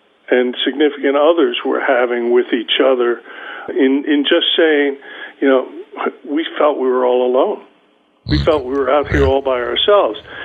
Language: English